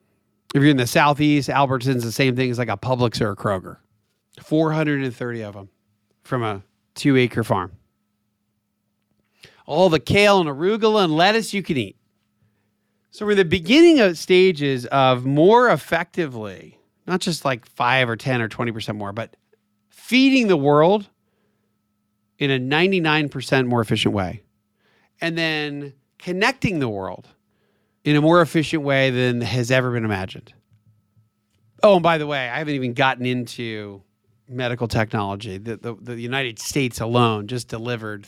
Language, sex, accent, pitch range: English, male, American, 105-145 Hz